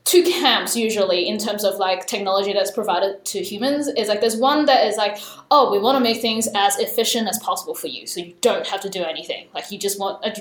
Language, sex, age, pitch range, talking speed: English, female, 10-29, 200-250 Hz, 240 wpm